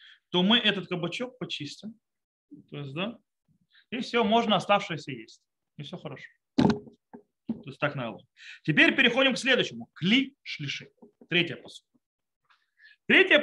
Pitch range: 165-235 Hz